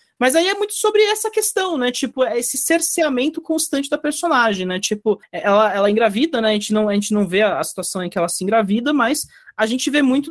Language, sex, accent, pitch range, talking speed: English, male, Brazilian, 210-270 Hz, 225 wpm